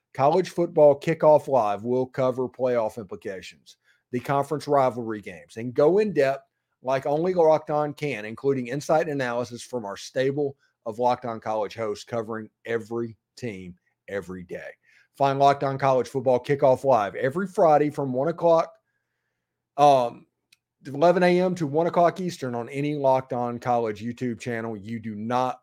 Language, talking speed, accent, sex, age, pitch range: English, 150 wpm, American, male, 40-59, 120-150 Hz